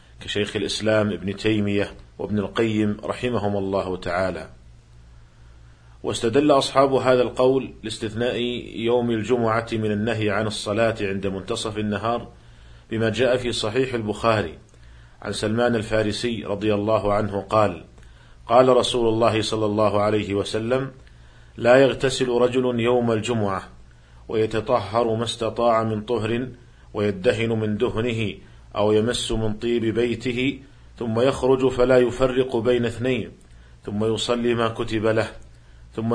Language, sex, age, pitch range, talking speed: Arabic, male, 50-69, 105-125 Hz, 120 wpm